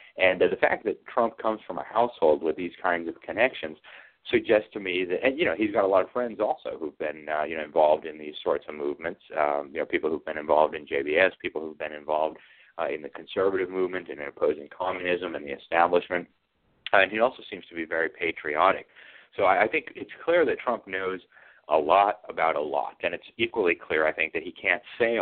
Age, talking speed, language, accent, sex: 30-49, 225 wpm, English, American, male